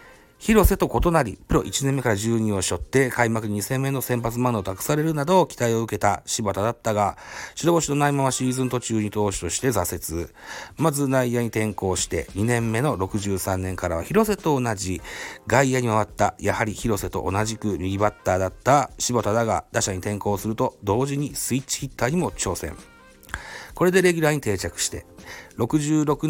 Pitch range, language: 100-135 Hz, Japanese